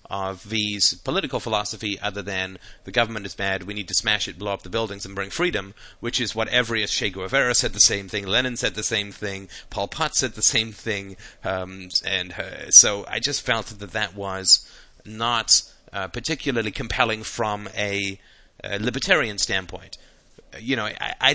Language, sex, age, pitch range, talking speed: English, male, 30-49, 95-115 Hz, 185 wpm